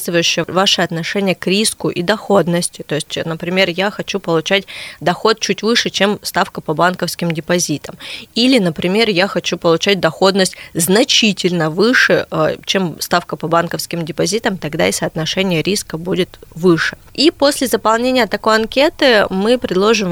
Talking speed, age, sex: 135 wpm, 20-39, female